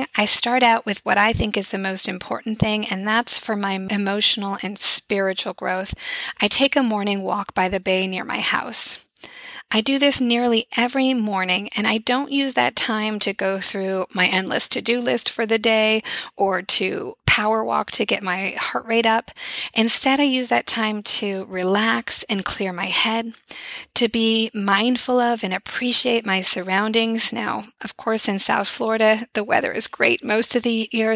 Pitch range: 200-240 Hz